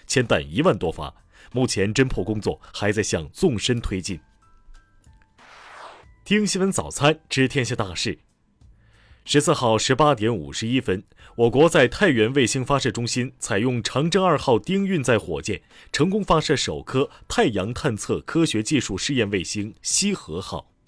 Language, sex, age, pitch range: Chinese, male, 30-49, 100-150 Hz